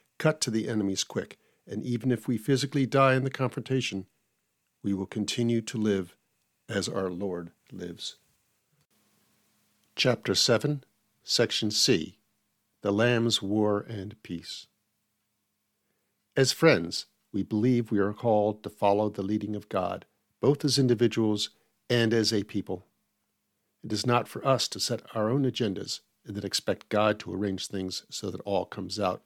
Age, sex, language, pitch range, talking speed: 50-69, male, English, 100-120 Hz, 150 wpm